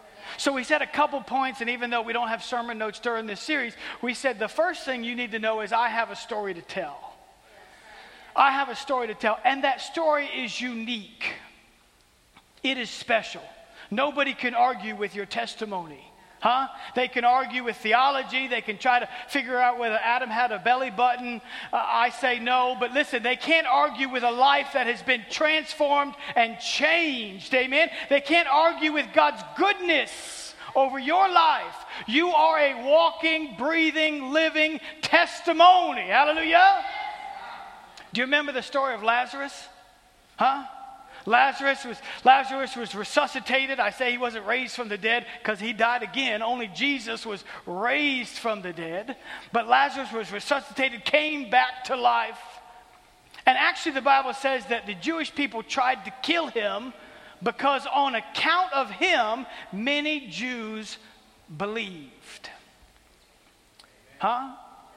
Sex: male